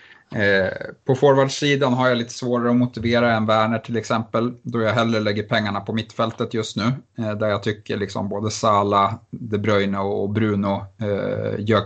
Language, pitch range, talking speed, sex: Swedish, 105-125 Hz, 175 wpm, male